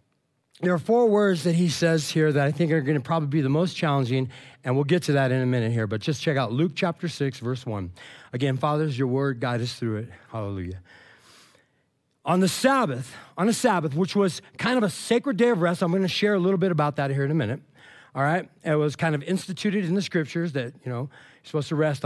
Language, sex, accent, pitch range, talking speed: English, male, American, 140-220 Hz, 250 wpm